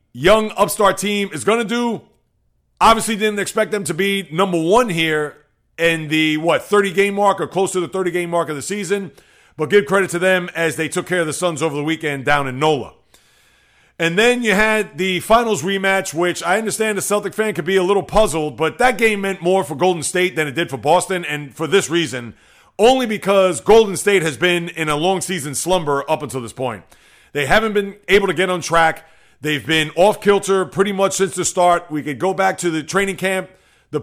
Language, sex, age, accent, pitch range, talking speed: English, male, 40-59, American, 165-200 Hz, 220 wpm